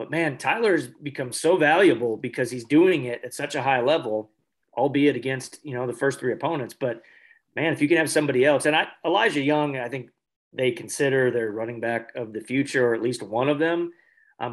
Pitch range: 120-155 Hz